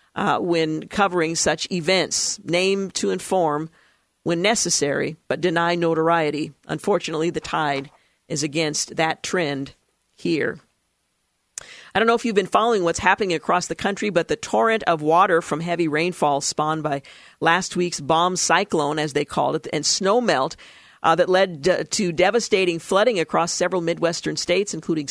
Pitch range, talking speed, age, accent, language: 160-185 Hz, 155 wpm, 50-69, American, English